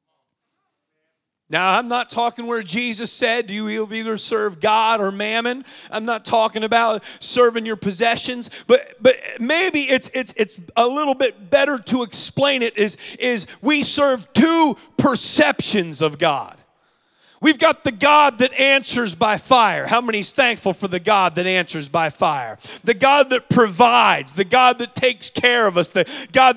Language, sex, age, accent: English, male, 30-49, American